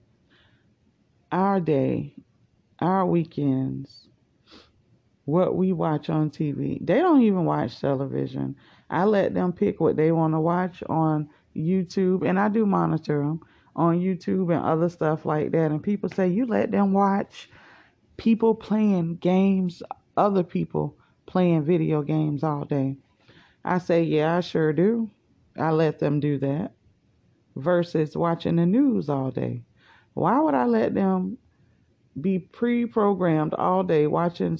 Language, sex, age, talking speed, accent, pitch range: English, female, 30-49, 140 wpm, American, 140-180 Hz